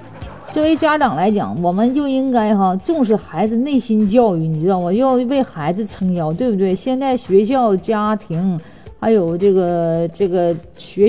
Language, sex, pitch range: Chinese, female, 180-260 Hz